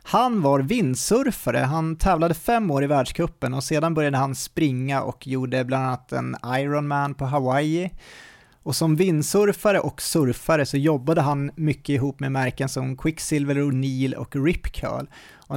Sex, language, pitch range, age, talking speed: male, Swedish, 130-160 Hz, 30-49, 160 wpm